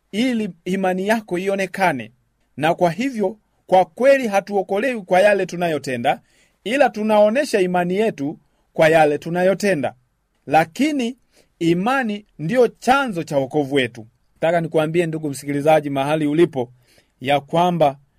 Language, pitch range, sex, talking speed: Swahili, 135-180 Hz, male, 115 wpm